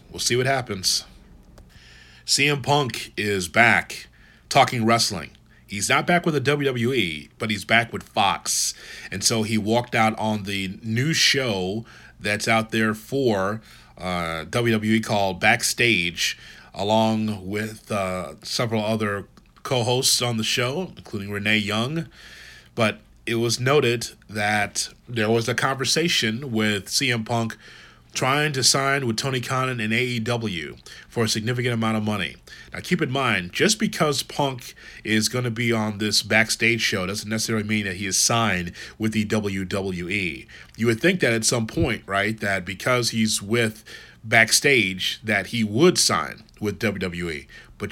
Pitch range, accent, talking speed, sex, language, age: 105-125 Hz, American, 150 wpm, male, English, 30-49